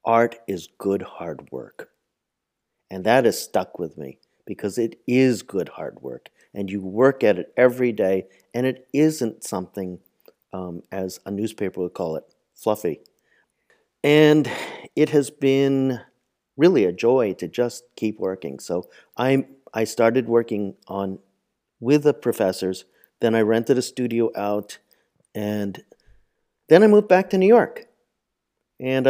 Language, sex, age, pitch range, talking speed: English, male, 50-69, 105-135 Hz, 145 wpm